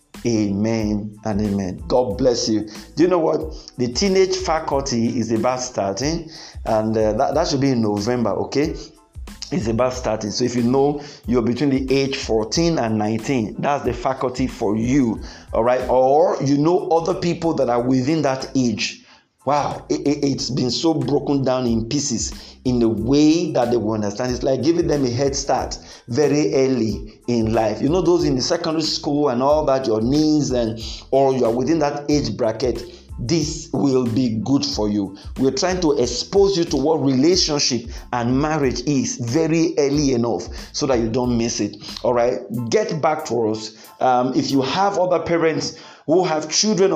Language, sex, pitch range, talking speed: English, male, 115-155 Hz, 185 wpm